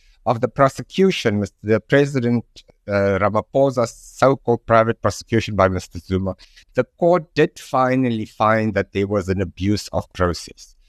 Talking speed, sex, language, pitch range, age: 145 wpm, male, English, 100-135 Hz, 60-79